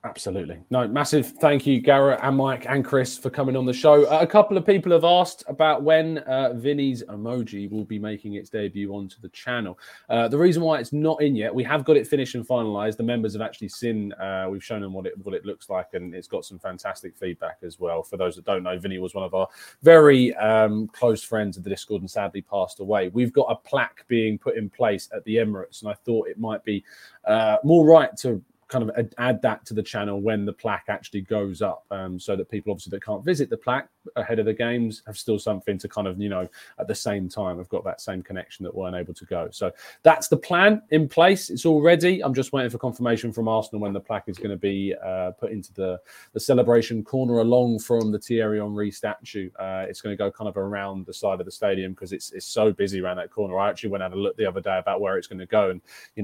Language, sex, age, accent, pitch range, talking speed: English, male, 20-39, British, 100-135 Hz, 255 wpm